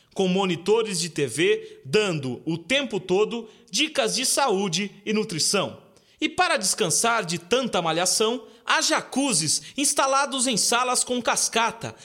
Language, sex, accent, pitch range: Chinese, male, Brazilian, 170-250 Hz